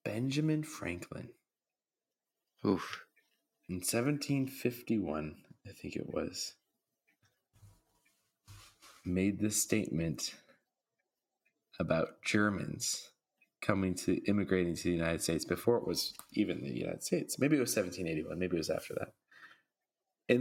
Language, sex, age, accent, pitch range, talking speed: English, male, 20-39, American, 80-110 Hz, 110 wpm